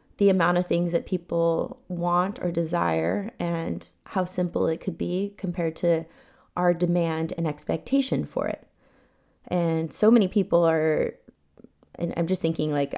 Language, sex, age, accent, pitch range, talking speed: English, female, 20-39, American, 165-185 Hz, 155 wpm